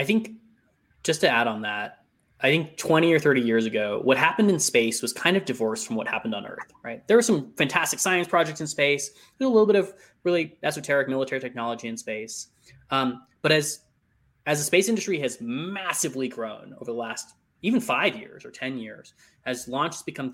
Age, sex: 20-39, male